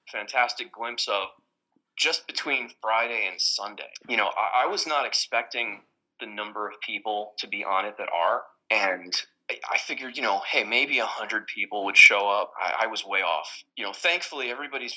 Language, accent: English, American